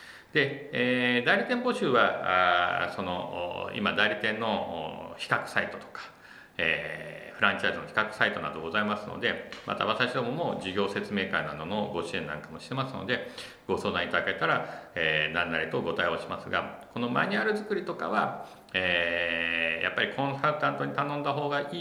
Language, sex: Japanese, male